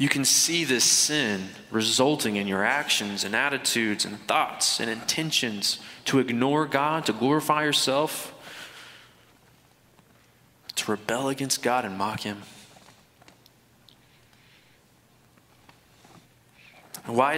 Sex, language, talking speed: male, English, 100 wpm